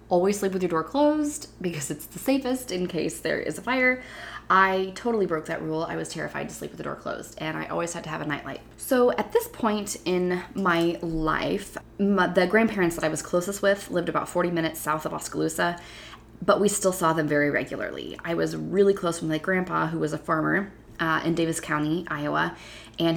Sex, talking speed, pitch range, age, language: female, 215 wpm, 155-190 Hz, 20-39, English